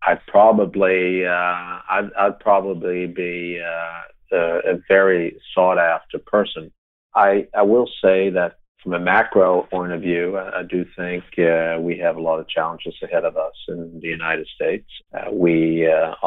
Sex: male